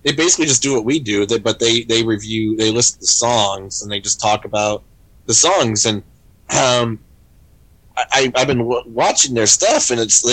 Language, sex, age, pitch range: English, male, 20-39, 105-120 Hz